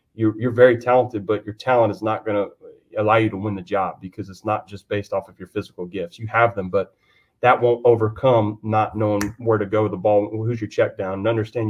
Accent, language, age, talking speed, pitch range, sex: American, English, 30-49, 245 wpm, 100-115 Hz, male